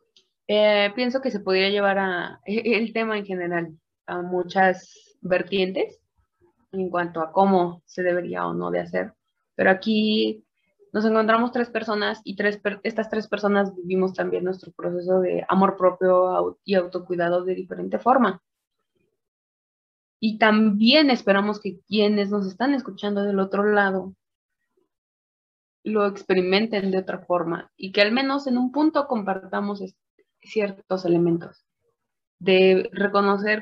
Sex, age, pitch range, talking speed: female, 20-39, 185-220 Hz, 135 wpm